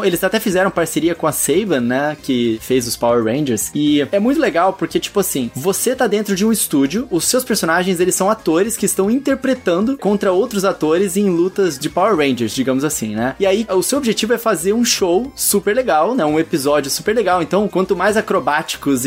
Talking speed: 210 wpm